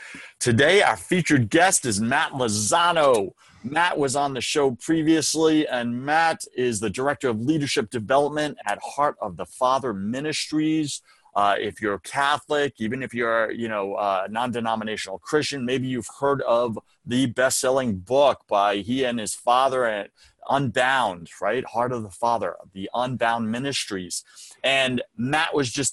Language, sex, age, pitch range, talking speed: English, male, 30-49, 105-140 Hz, 150 wpm